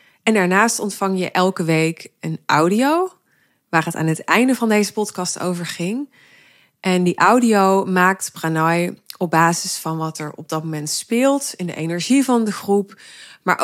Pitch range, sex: 165-210 Hz, female